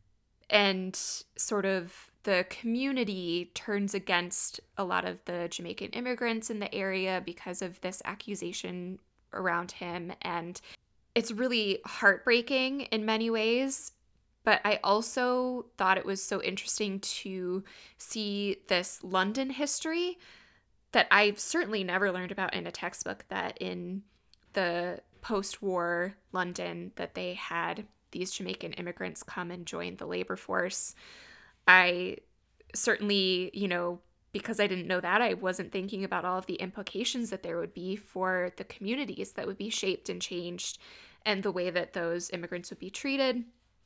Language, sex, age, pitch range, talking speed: English, female, 20-39, 180-220 Hz, 145 wpm